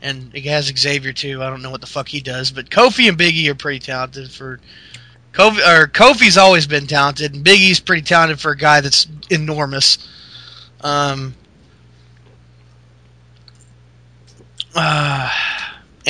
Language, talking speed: English, 140 wpm